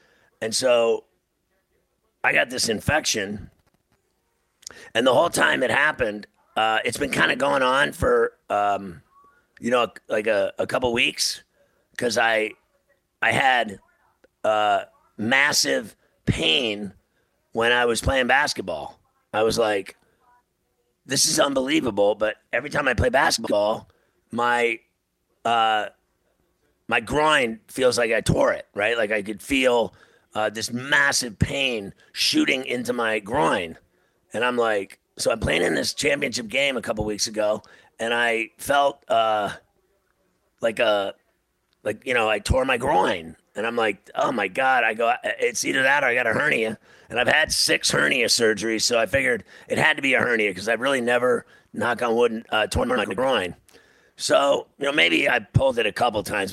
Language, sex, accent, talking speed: English, male, American, 165 wpm